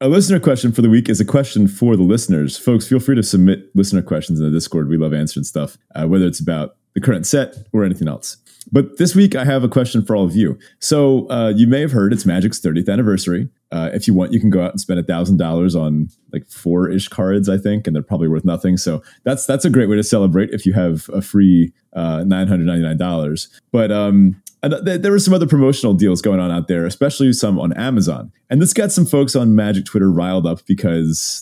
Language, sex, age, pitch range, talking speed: English, male, 30-49, 90-120 Hz, 235 wpm